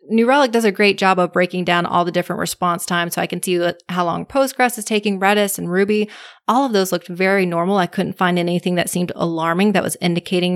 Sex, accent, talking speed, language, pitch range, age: female, American, 240 wpm, English, 175-205 Hz, 20-39